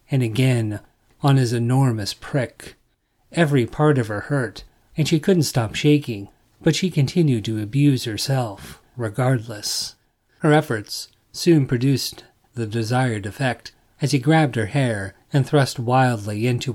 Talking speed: 140 wpm